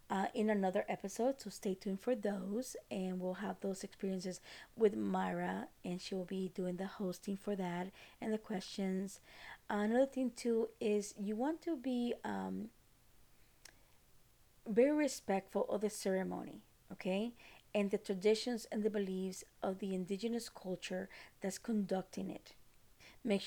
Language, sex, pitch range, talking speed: English, female, 185-215 Hz, 150 wpm